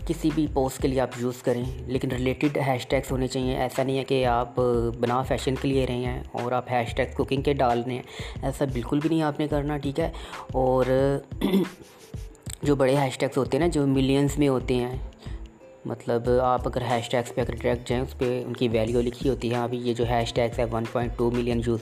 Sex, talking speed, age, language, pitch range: female, 225 wpm, 20-39, Urdu, 125-145 Hz